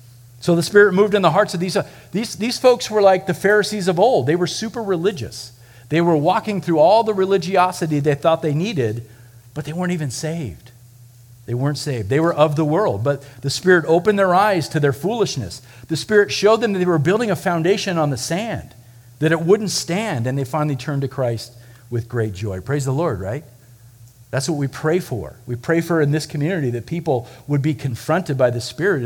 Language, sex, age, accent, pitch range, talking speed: English, male, 50-69, American, 120-180 Hz, 215 wpm